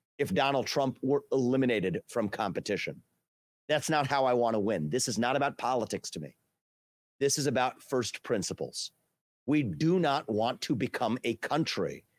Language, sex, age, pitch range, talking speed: English, male, 40-59, 105-150 Hz, 160 wpm